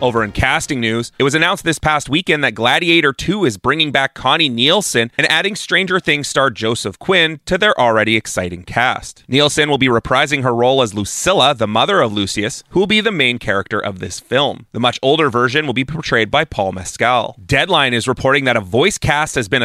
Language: English